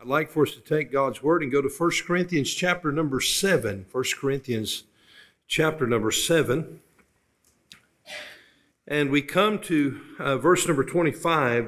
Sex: male